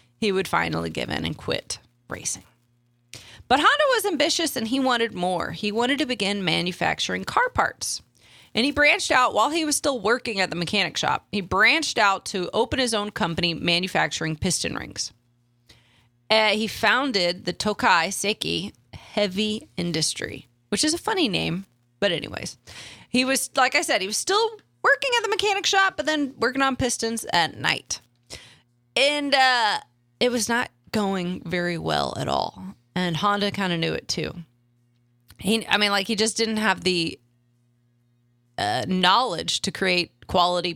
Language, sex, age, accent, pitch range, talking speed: English, female, 30-49, American, 150-235 Hz, 165 wpm